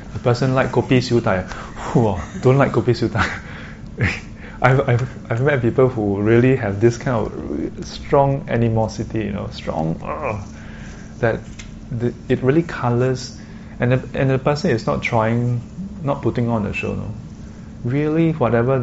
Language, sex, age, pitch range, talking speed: English, male, 20-39, 105-130 Hz, 155 wpm